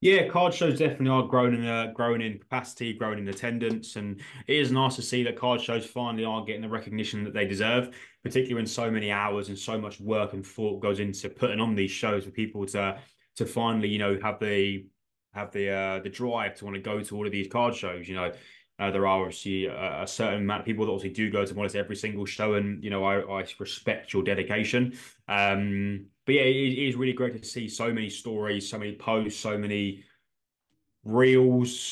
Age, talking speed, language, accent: 20-39, 220 wpm, English, British